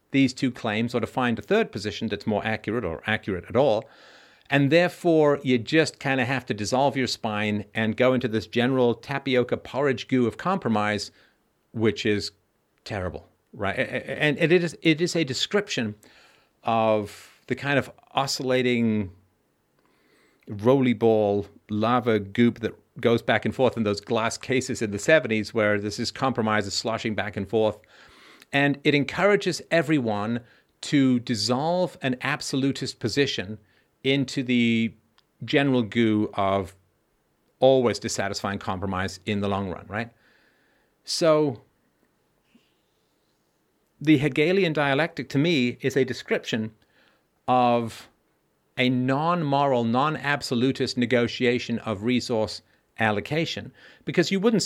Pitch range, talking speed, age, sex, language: 110-140 Hz, 130 wpm, 50-69, male, English